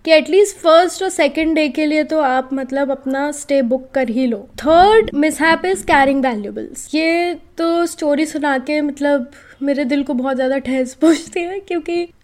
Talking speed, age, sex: 130 wpm, 20-39, female